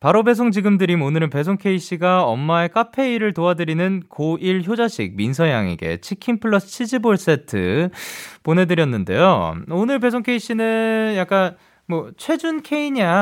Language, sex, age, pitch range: Korean, male, 20-39, 130-205 Hz